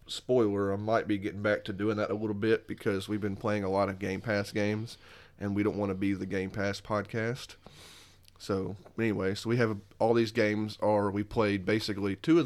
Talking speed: 220 wpm